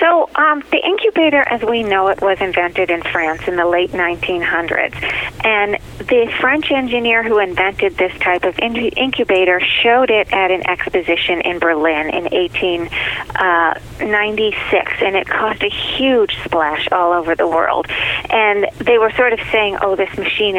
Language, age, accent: English, 40-59, American